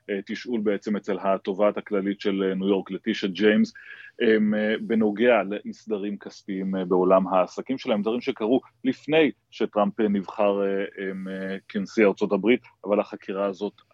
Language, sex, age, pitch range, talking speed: Hebrew, male, 30-49, 100-120 Hz, 115 wpm